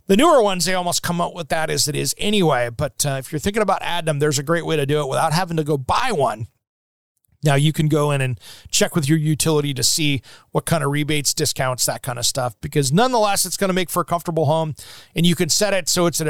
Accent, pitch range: American, 145-180 Hz